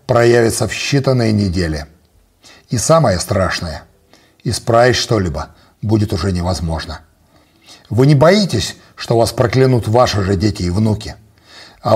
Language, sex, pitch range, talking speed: Russian, male, 100-145 Hz, 125 wpm